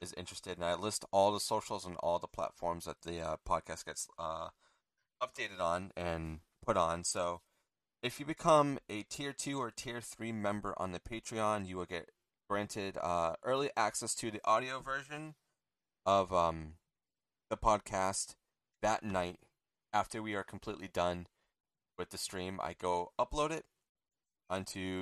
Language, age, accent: English, 30-49, American